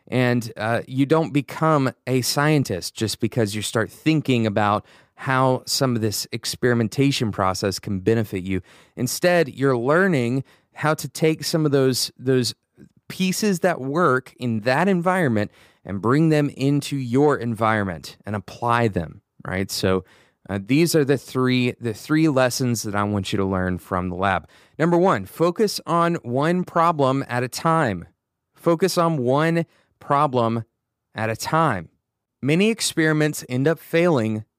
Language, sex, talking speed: English, male, 150 wpm